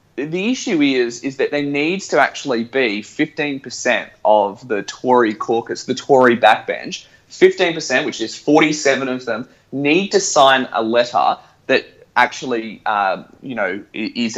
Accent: Australian